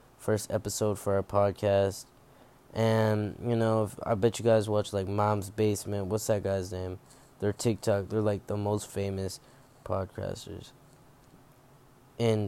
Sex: male